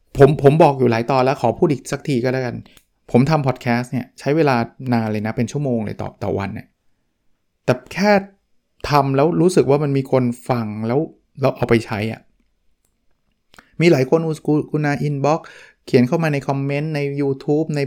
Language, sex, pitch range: Thai, male, 120-150 Hz